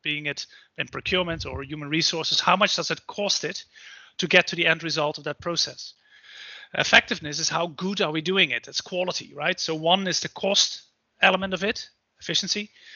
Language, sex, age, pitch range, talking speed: English, male, 30-49, 160-195 Hz, 195 wpm